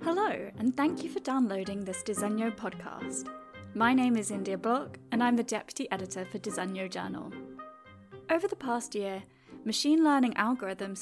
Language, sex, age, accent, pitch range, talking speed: English, female, 10-29, British, 200-250 Hz, 160 wpm